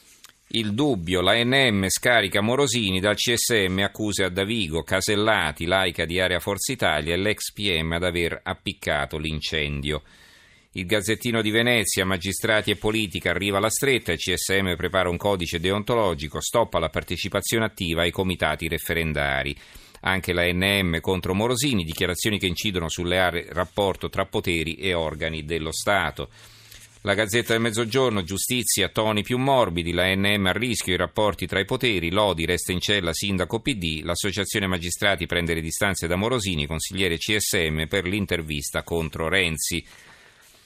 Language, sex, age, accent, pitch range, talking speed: Italian, male, 40-59, native, 85-110 Hz, 150 wpm